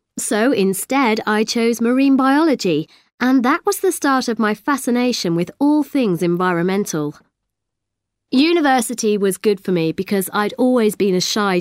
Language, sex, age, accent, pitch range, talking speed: English, female, 30-49, British, 185-270 Hz, 150 wpm